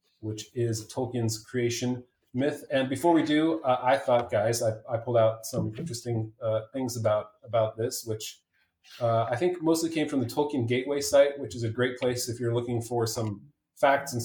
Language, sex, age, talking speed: English, male, 30-49, 200 wpm